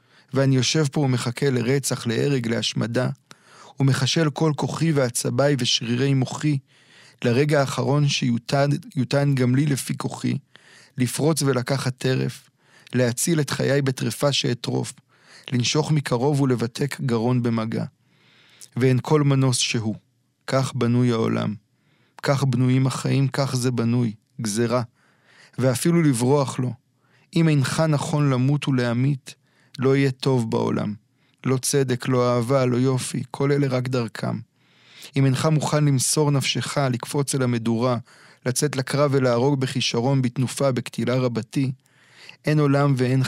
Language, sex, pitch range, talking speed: Hebrew, male, 120-140 Hz, 120 wpm